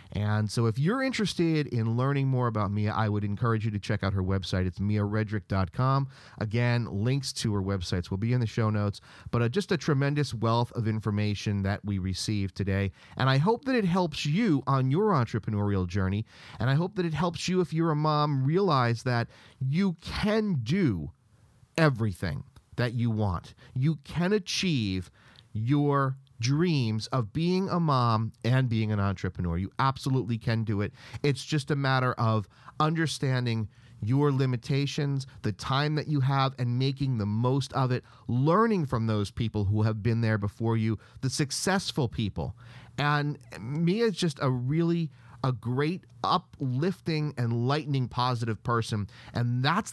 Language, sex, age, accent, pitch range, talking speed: English, male, 40-59, American, 110-145 Hz, 165 wpm